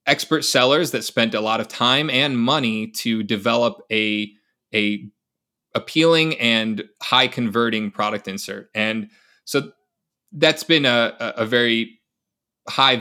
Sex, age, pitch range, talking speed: male, 20-39, 110-130 Hz, 130 wpm